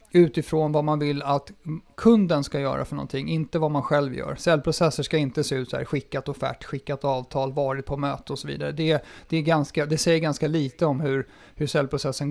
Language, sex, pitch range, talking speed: Swedish, male, 145-175 Hz, 210 wpm